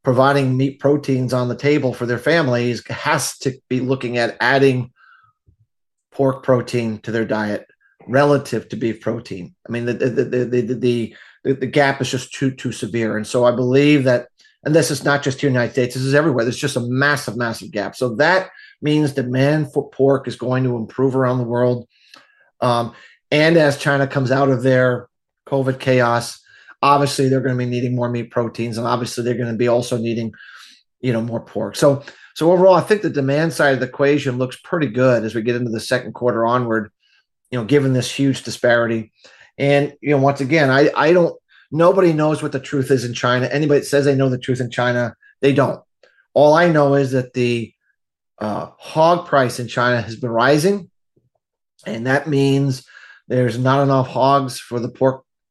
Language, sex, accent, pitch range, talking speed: English, male, American, 120-140 Hz, 200 wpm